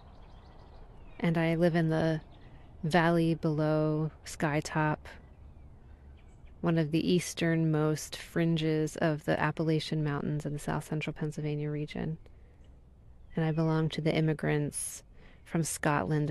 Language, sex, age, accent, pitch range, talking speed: English, female, 30-49, American, 135-170 Hz, 115 wpm